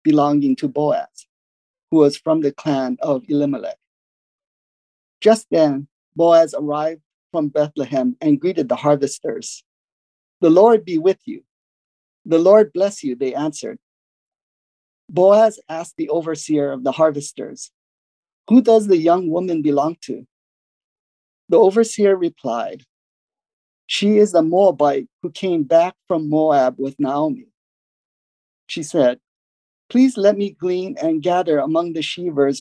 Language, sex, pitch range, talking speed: English, male, 150-205 Hz, 130 wpm